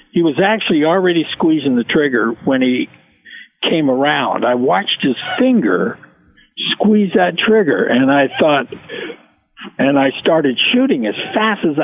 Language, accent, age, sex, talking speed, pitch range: English, American, 60-79, male, 140 wpm, 145-240 Hz